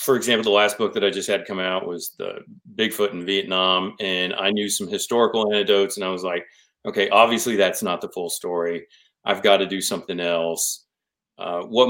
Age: 40-59